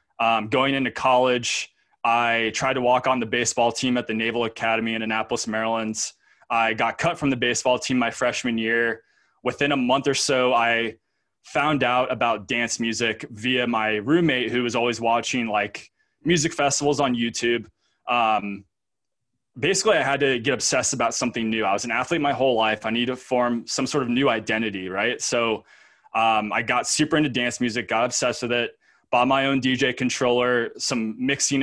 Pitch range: 115-130 Hz